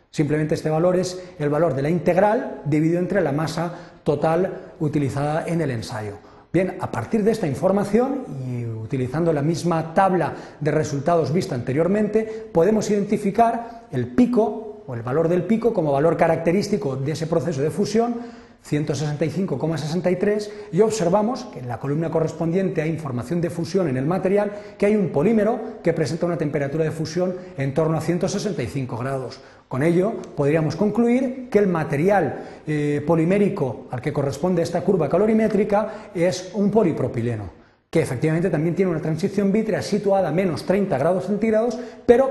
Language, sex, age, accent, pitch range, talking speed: Spanish, male, 40-59, Spanish, 145-200 Hz, 160 wpm